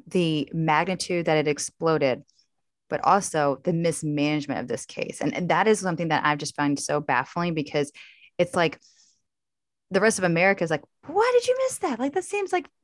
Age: 20-39